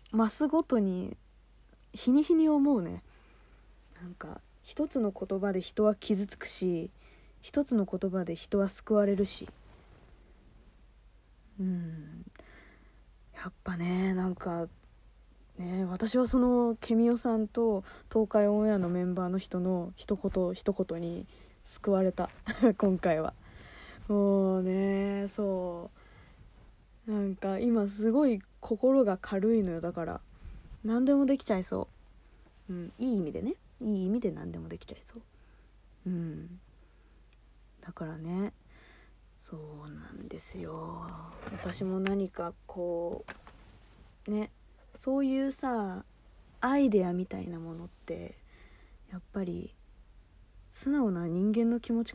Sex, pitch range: female, 170-225 Hz